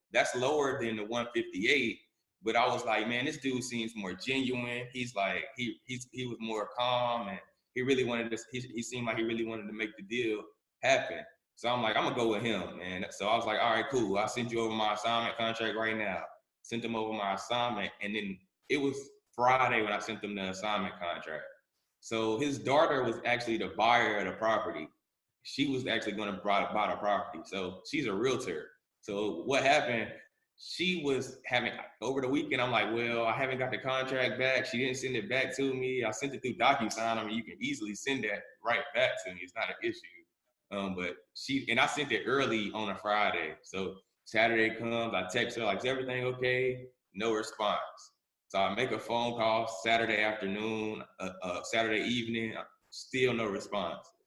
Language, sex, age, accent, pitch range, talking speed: English, male, 20-39, American, 110-130 Hz, 205 wpm